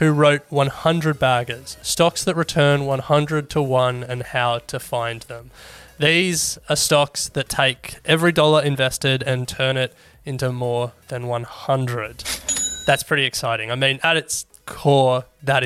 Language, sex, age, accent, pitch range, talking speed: English, male, 20-39, Australian, 130-155 Hz, 150 wpm